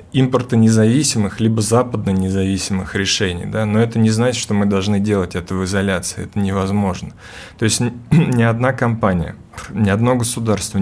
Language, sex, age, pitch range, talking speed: Russian, male, 20-39, 100-115 Hz, 150 wpm